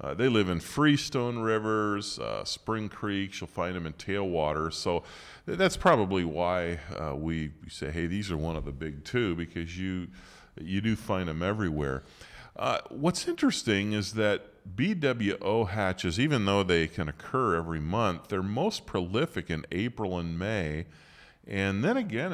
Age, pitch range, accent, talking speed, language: 40-59, 85-110 Hz, American, 165 wpm, English